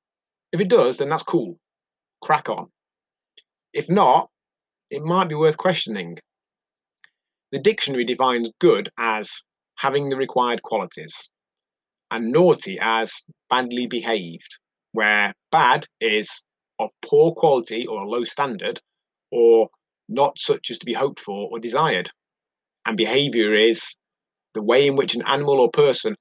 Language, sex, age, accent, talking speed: English, male, 30-49, British, 135 wpm